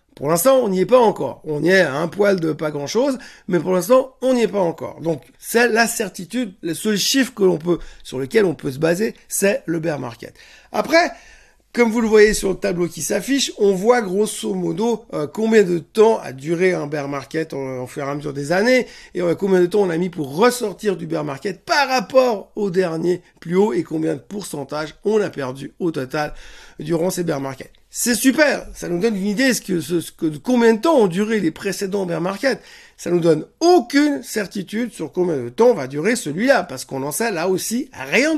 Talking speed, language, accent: 225 wpm, French, French